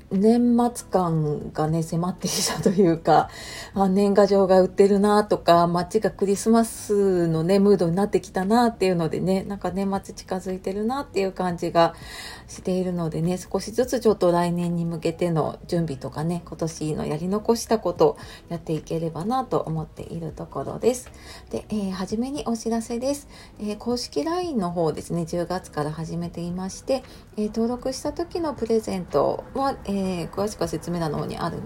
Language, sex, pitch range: Japanese, female, 165-225 Hz